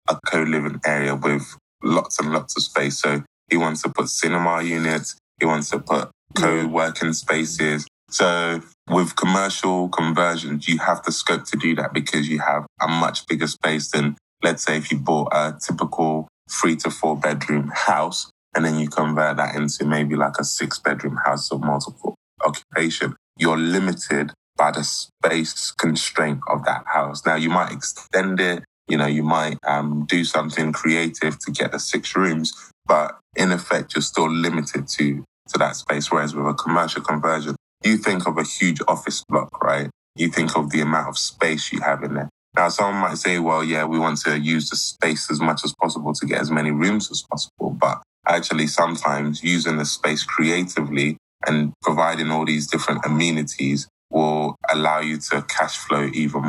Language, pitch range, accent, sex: English, 75-80 Hz, British, male